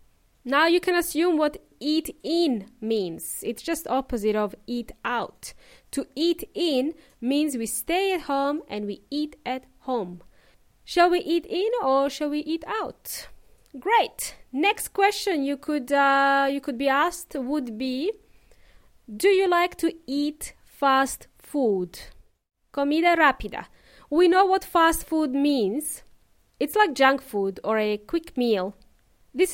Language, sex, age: English, female, 20-39